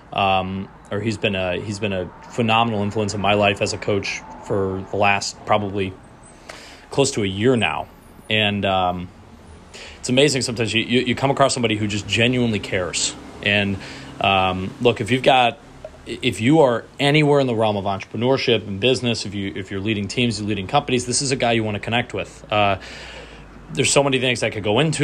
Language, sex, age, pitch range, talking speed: English, male, 30-49, 100-120 Hz, 200 wpm